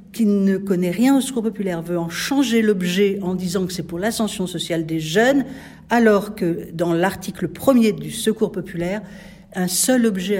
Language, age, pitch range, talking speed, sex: French, 60-79, 195-230 Hz, 180 wpm, female